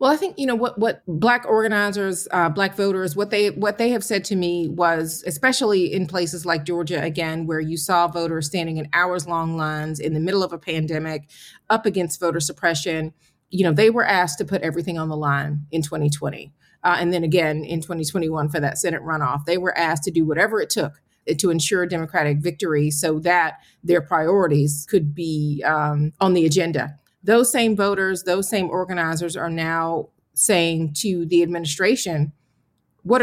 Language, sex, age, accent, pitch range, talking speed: English, female, 30-49, American, 160-190 Hz, 190 wpm